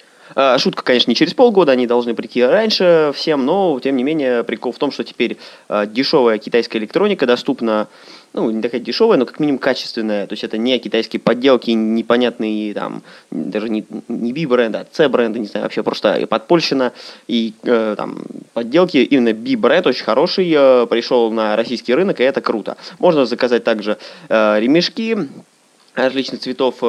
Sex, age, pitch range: male, 20-39, 110-140 Hz